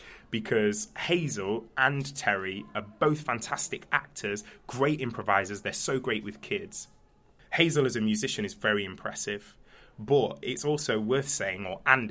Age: 20-39